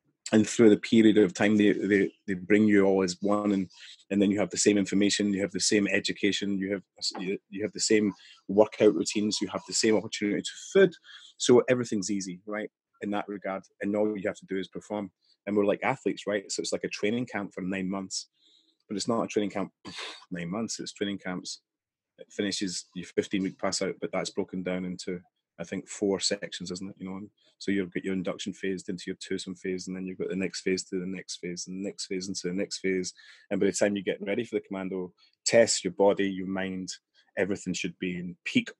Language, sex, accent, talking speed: English, male, British, 235 wpm